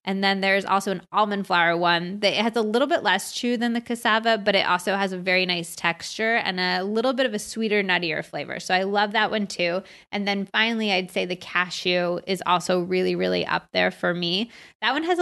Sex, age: female, 20-39